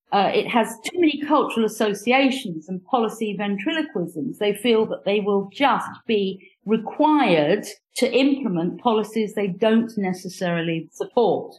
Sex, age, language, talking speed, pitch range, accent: female, 50-69, English, 130 wpm, 185-245 Hz, British